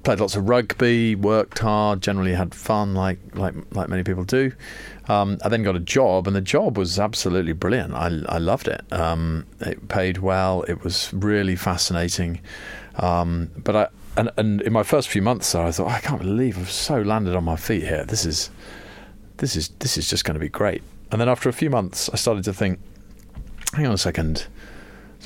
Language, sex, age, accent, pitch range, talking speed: English, male, 40-59, British, 85-105 Hz, 205 wpm